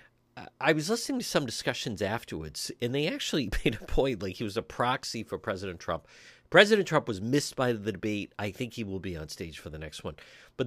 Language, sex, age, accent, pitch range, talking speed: English, male, 50-69, American, 105-140 Hz, 225 wpm